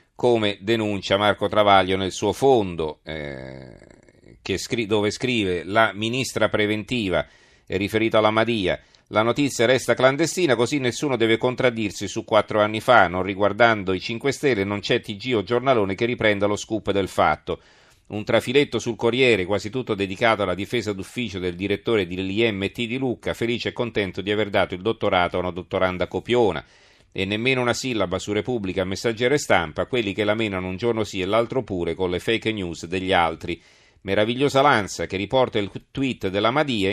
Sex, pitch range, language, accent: male, 95-120 Hz, Italian, native